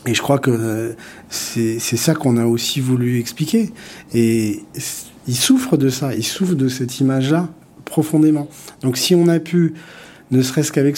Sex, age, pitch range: male, 40-59, 120-150 Hz